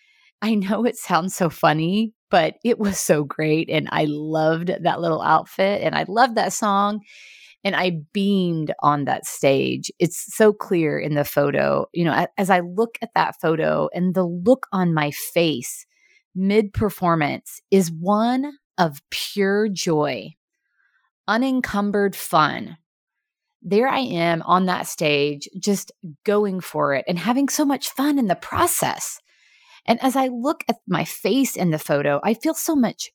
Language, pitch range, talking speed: English, 160-225 Hz, 160 wpm